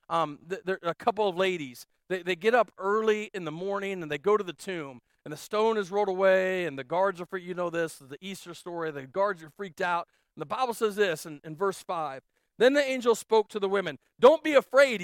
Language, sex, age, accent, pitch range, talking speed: English, male, 40-59, American, 155-225 Hz, 245 wpm